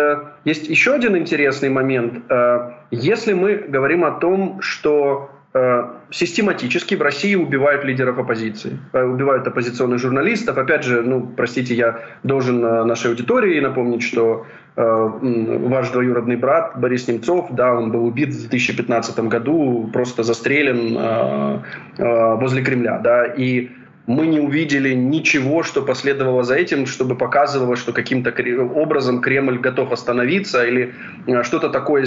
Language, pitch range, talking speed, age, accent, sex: Ukrainian, 120-150 Hz, 125 wpm, 20-39, native, male